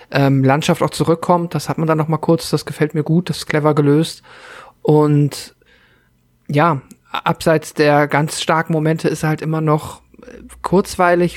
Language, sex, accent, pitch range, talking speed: German, male, German, 150-175 Hz, 165 wpm